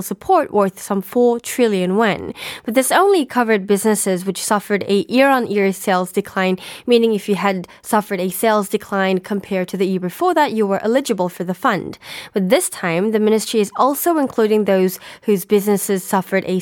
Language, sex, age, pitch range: Korean, female, 10-29, 195-230 Hz